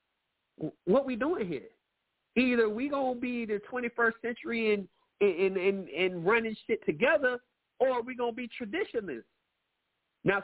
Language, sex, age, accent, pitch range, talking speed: English, male, 40-59, American, 150-235 Hz, 140 wpm